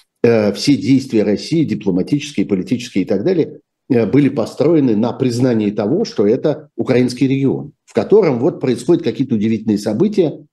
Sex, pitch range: male, 100-130 Hz